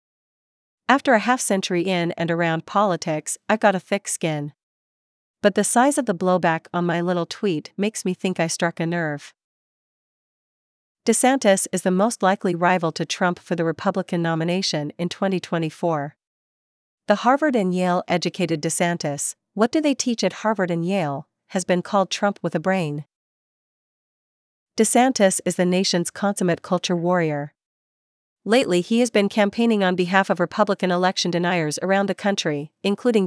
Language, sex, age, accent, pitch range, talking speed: English, female, 40-59, American, 170-200 Hz, 155 wpm